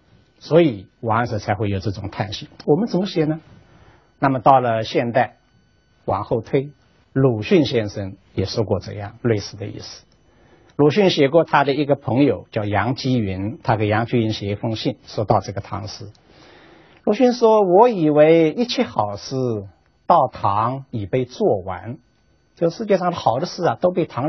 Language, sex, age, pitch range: Chinese, male, 60-79, 110-160 Hz